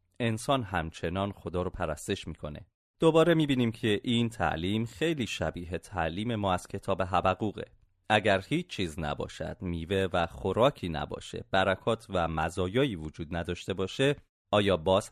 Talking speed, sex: 135 wpm, male